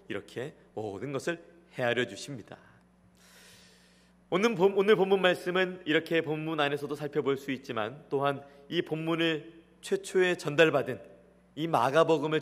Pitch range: 135-180 Hz